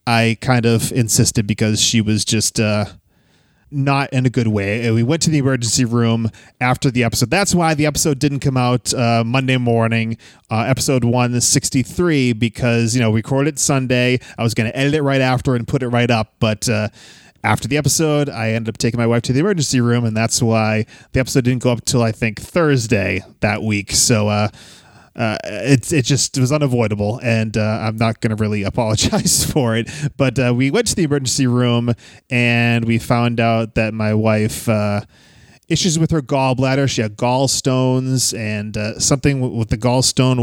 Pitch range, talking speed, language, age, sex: 110-135 Hz, 195 wpm, English, 20-39, male